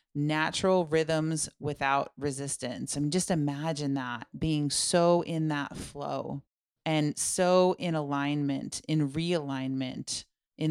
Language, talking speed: English, 120 wpm